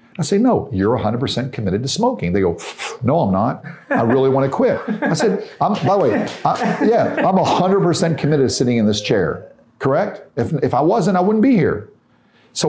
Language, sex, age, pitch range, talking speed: Hebrew, male, 50-69, 115-195 Hz, 220 wpm